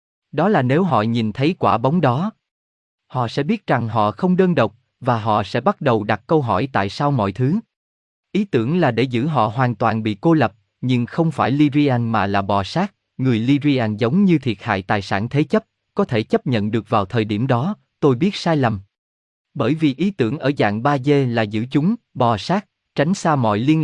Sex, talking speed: male, 220 wpm